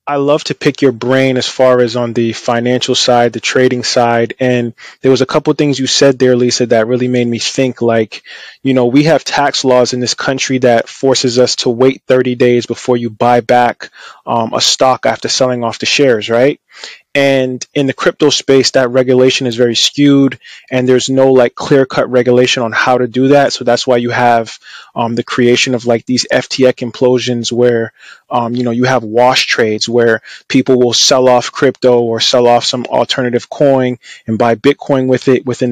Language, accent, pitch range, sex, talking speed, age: English, American, 120-130 Hz, male, 205 wpm, 20-39